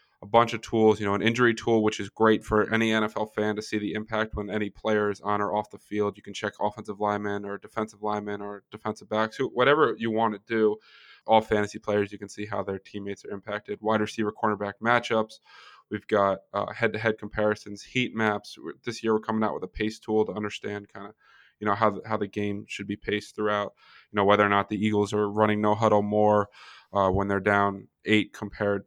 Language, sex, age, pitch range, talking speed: English, male, 20-39, 105-110 Hz, 225 wpm